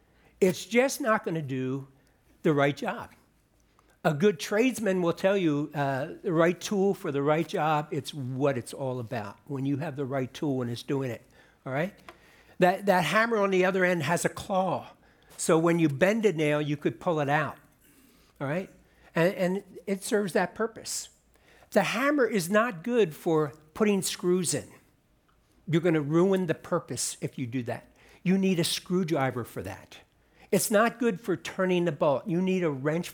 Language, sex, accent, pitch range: English, male, American, 155-200 Hz